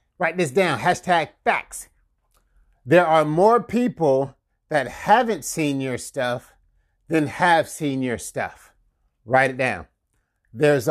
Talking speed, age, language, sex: 125 wpm, 30-49, English, male